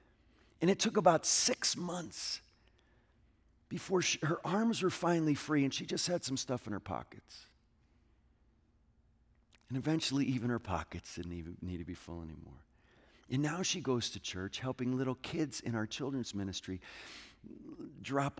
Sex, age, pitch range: male, 40-59, 105-155 Hz